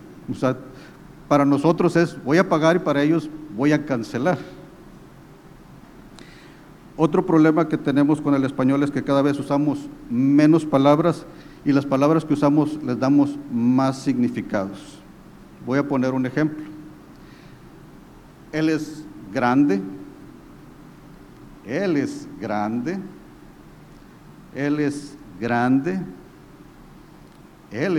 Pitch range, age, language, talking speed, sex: 130-155 Hz, 50-69, Spanish, 110 wpm, male